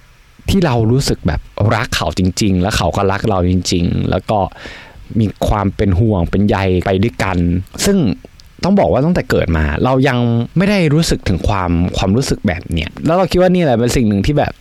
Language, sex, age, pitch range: Thai, male, 20-39, 95-130 Hz